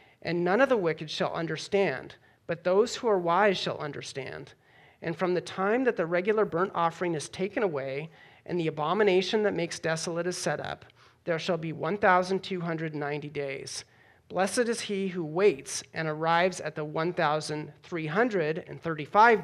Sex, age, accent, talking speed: male, 40-59, American, 155 wpm